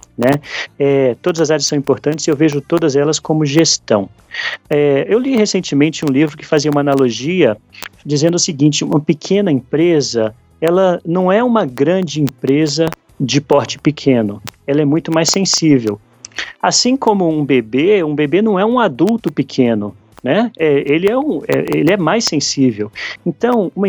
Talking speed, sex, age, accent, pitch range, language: 155 wpm, male, 40-59, Brazilian, 135-170 Hz, Portuguese